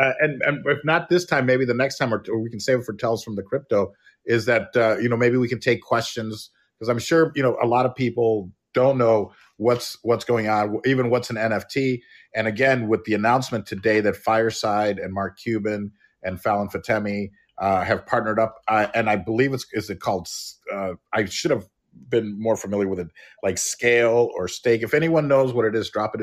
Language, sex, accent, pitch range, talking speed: English, male, American, 105-120 Hz, 225 wpm